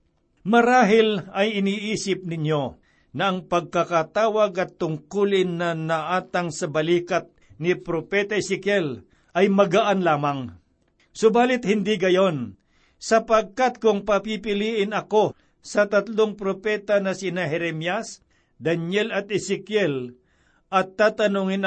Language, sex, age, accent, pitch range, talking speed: Filipino, male, 60-79, native, 170-200 Hz, 100 wpm